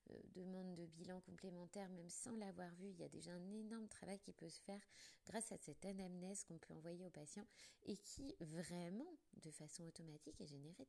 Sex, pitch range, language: female, 160-195 Hz, French